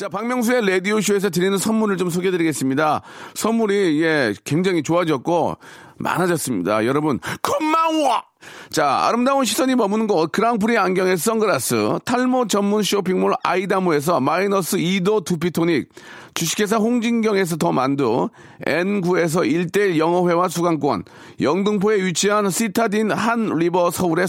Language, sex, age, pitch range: Korean, male, 40-59, 175-215 Hz